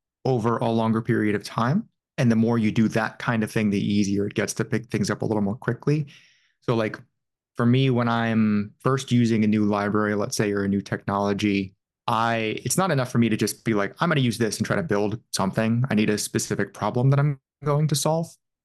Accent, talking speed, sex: American, 235 wpm, male